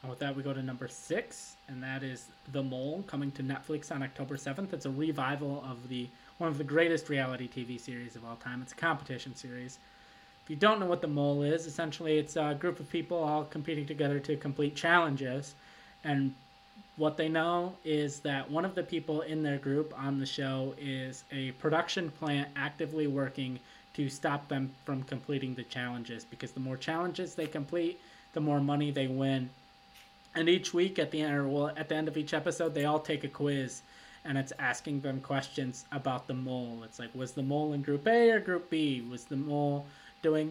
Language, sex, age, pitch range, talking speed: English, male, 20-39, 135-160 Hz, 200 wpm